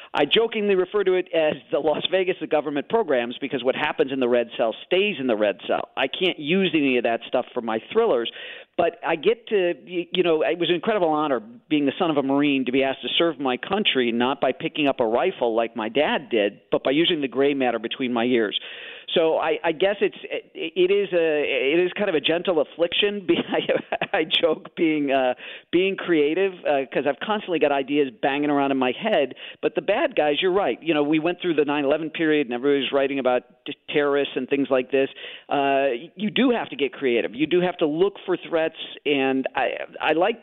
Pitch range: 140-185 Hz